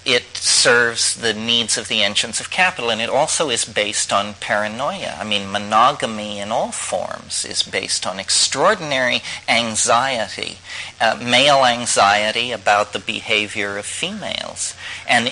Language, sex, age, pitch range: English, male, 40-59, 100-115 Hz